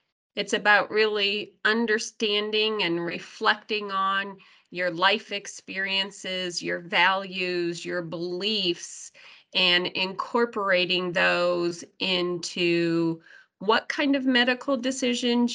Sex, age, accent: female, 30-49, American